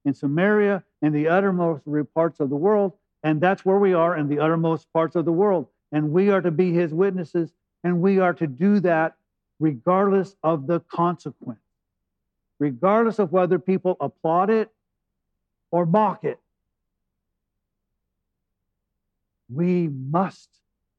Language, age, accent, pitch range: English, 50-69, American, 145-190 Hz